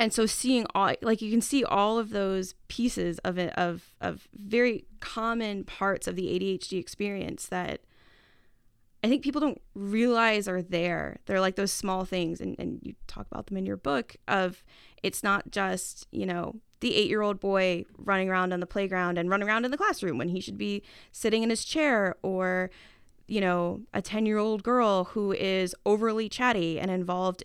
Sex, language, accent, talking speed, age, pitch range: female, English, American, 195 wpm, 20-39, 175-220 Hz